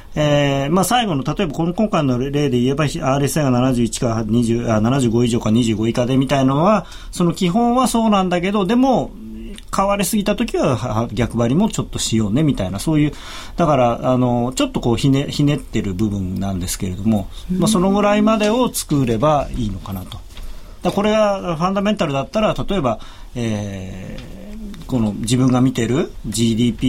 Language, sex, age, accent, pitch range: Japanese, male, 40-59, native, 115-165 Hz